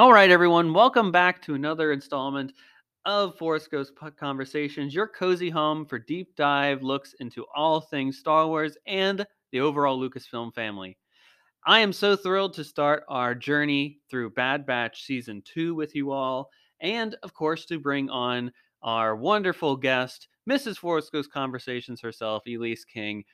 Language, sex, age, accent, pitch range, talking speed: English, male, 30-49, American, 125-160 Hz, 155 wpm